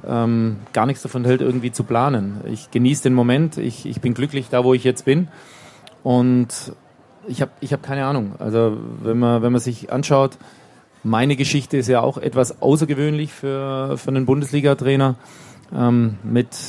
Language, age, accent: German, 30-49, German